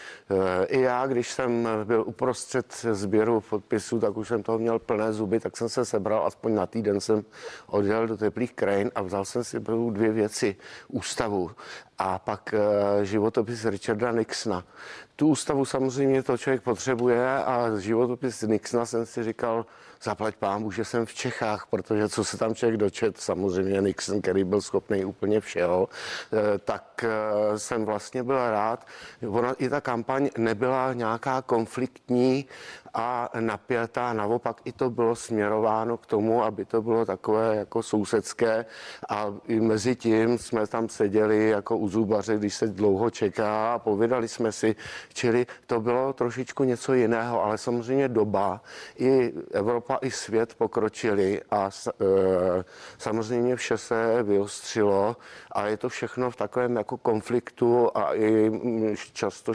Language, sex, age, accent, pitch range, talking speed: Czech, male, 50-69, native, 105-120 Hz, 145 wpm